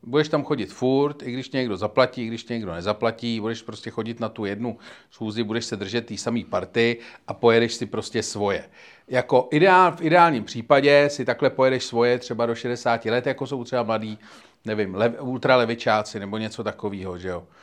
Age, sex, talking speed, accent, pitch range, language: 40-59, male, 185 wpm, native, 115-145 Hz, Czech